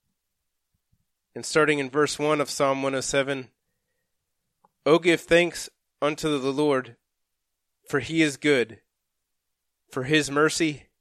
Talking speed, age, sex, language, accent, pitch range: 120 wpm, 30-49, male, English, American, 110-150 Hz